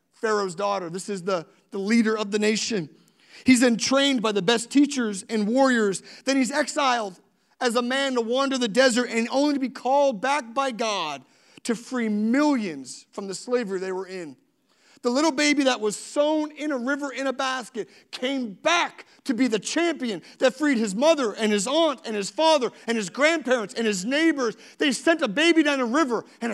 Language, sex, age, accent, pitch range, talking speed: English, male, 40-59, American, 210-265 Hz, 200 wpm